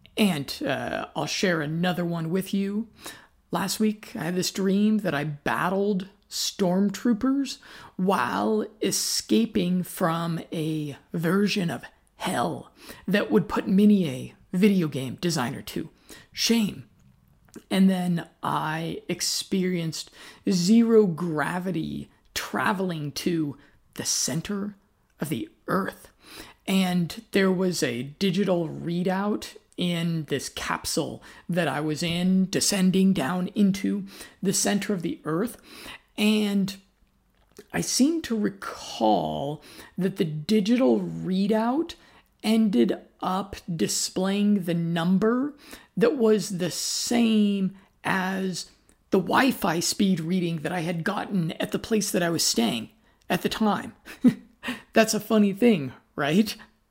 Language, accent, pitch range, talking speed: English, American, 170-210 Hz, 120 wpm